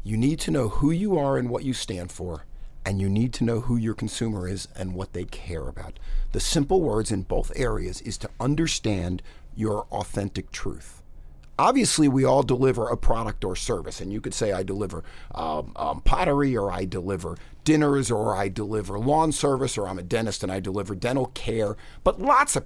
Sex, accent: male, American